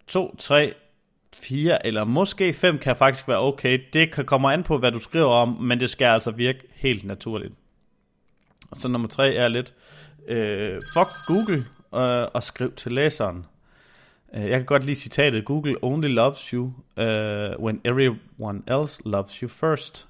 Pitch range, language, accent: 115-150 Hz, Danish, native